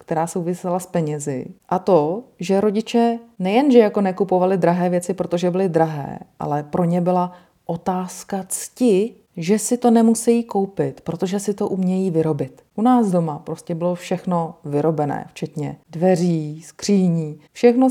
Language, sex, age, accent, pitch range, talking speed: Czech, female, 40-59, native, 170-215 Hz, 145 wpm